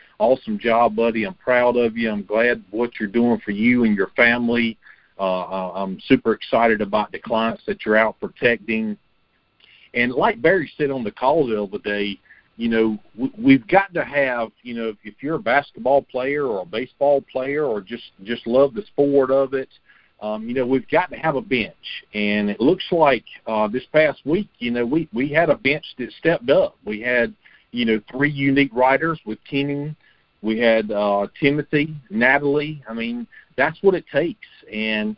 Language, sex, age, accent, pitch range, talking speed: English, male, 50-69, American, 110-140 Hz, 190 wpm